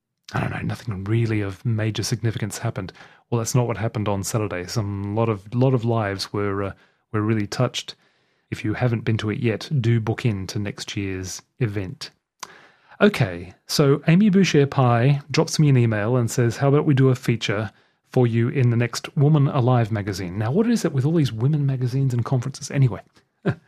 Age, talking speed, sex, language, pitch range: 30-49, 200 wpm, male, English, 115-155 Hz